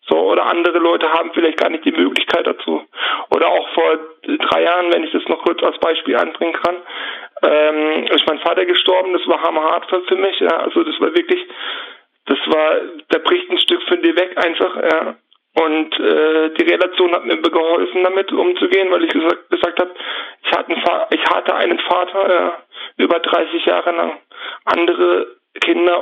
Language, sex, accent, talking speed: German, male, German, 175 wpm